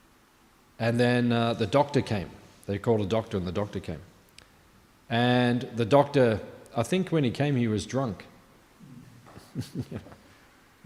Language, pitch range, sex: English, 105-135 Hz, male